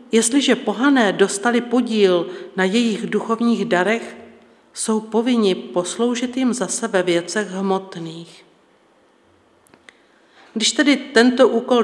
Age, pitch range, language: 50-69, 185-215 Hz, Czech